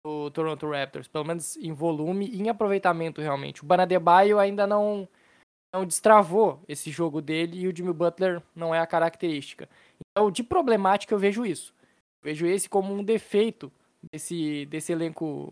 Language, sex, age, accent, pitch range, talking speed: Portuguese, male, 10-29, Brazilian, 160-210 Hz, 170 wpm